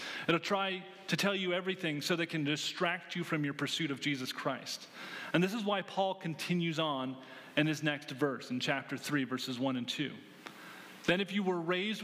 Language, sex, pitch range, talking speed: English, male, 140-180 Hz, 200 wpm